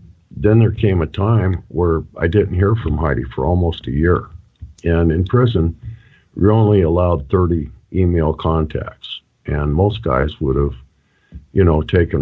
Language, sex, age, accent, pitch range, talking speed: English, male, 50-69, American, 75-95 Hz, 155 wpm